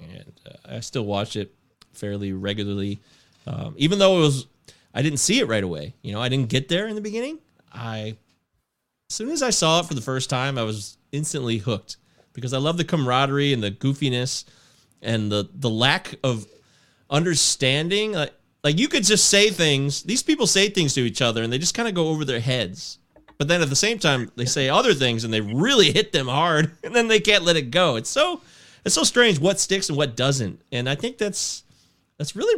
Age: 30-49